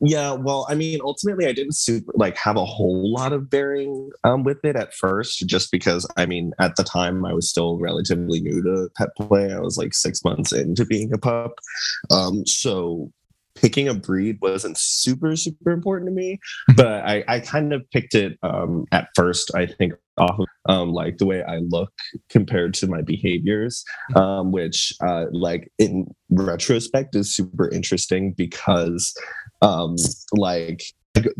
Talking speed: 175 wpm